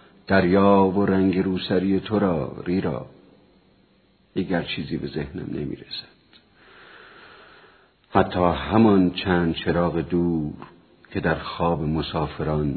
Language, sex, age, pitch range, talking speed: Persian, male, 50-69, 90-120 Hz, 100 wpm